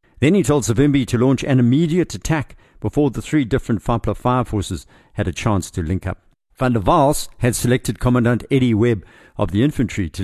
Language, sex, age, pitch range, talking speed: English, male, 60-79, 95-120 Hz, 200 wpm